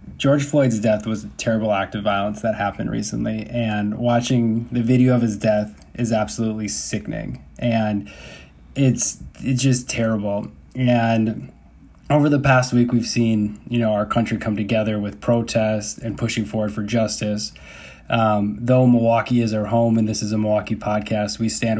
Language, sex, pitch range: English, male, 110-125 Hz